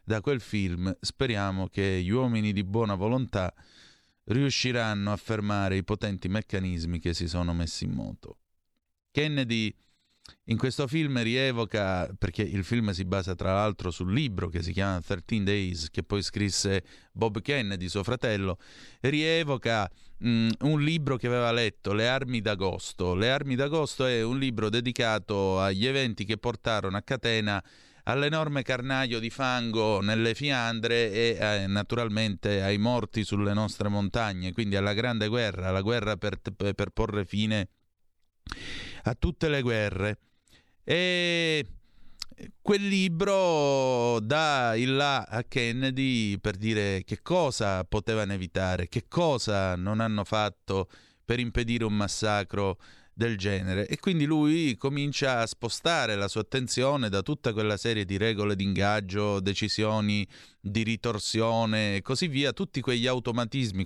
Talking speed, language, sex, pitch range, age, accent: 140 wpm, Italian, male, 100-125 Hz, 30-49, native